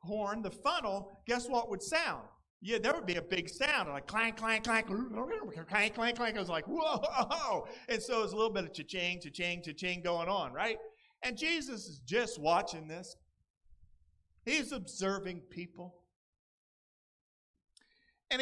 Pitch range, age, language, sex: 175-240 Hz, 50-69, English, male